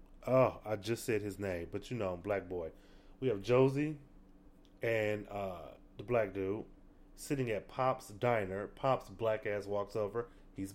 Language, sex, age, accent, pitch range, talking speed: English, male, 30-49, American, 95-130 Hz, 160 wpm